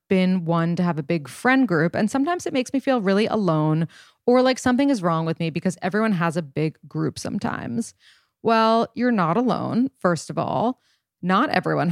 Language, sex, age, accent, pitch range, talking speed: English, female, 30-49, American, 160-200 Hz, 195 wpm